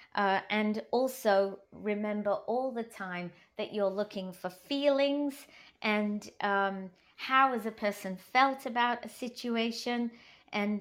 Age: 30-49